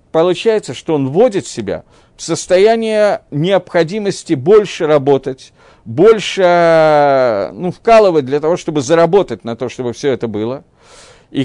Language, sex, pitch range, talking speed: Russian, male, 150-200 Hz, 125 wpm